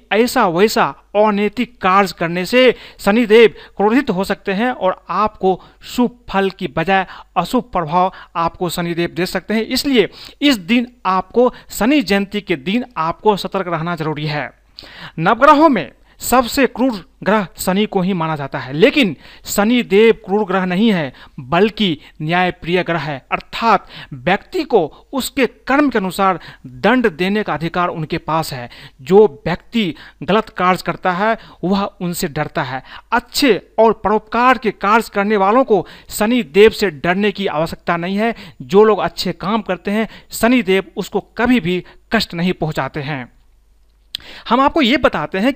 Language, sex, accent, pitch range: Hindi, male, native, 175-235 Hz